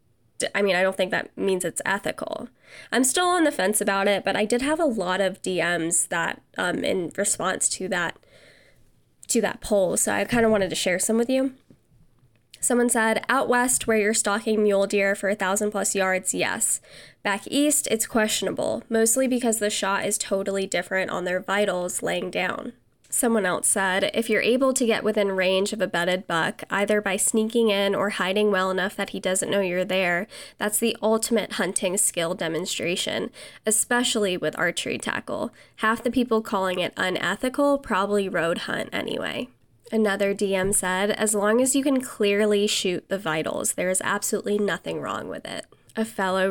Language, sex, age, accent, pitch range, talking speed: English, female, 10-29, American, 190-225 Hz, 185 wpm